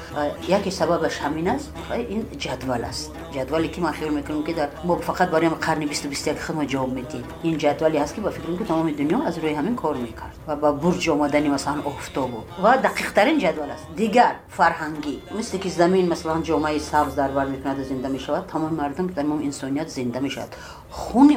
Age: 50-69